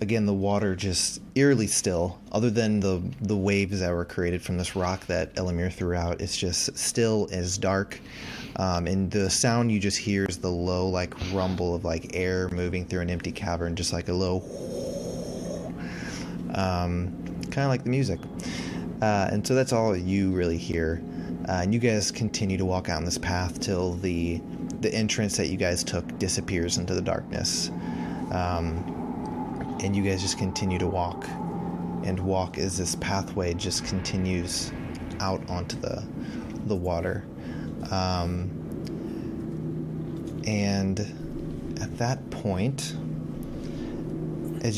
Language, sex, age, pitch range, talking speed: English, male, 20-39, 85-100 Hz, 150 wpm